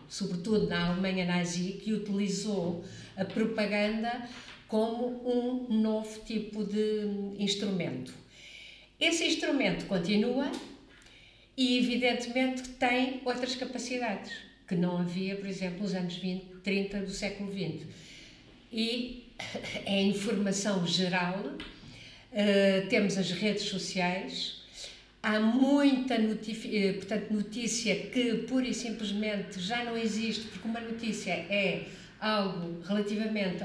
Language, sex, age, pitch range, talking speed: Portuguese, female, 50-69, 195-235 Hz, 105 wpm